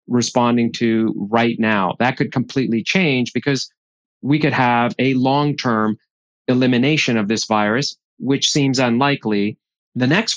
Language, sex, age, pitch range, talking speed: English, male, 30-49, 120-140 Hz, 135 wpm